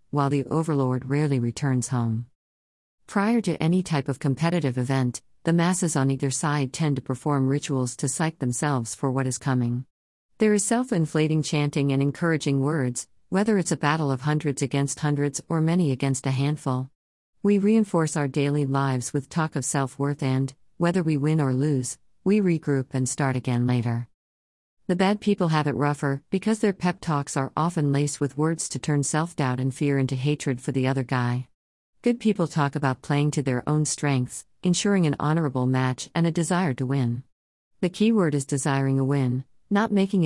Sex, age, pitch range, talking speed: female, 50-69, 130-160 Hz, 185 wpm